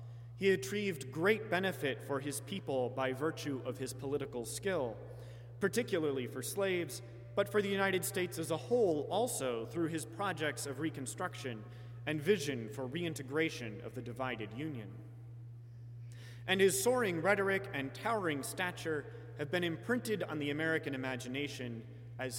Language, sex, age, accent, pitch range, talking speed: English, male, 30-49, American, 120-150 Hz, 140 wpm